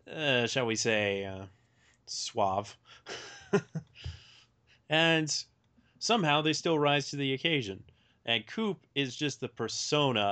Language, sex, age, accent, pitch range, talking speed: English, male, 30-49, American, 110-140 Hz, 115 wpm